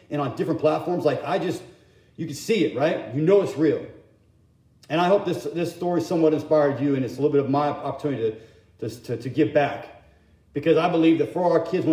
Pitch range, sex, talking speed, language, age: 140-170 Hz, male, 235 wpm, English, 40-59